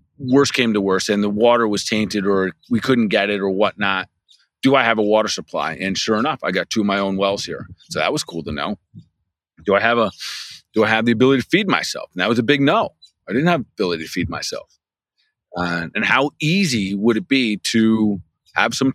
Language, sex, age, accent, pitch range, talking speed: English, male, 30-49, American, 95-125 Hz, 240 wpm